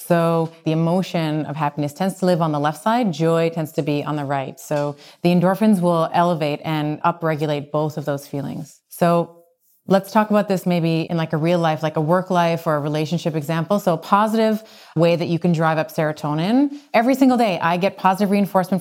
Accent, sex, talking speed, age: American, female, 210 wpm, 30-49